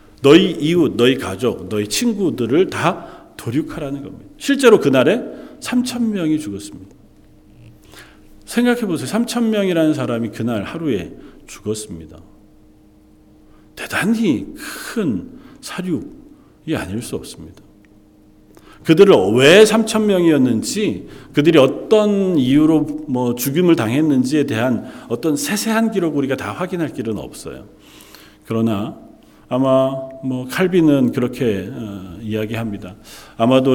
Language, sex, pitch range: Korean, male, 105-170 Hz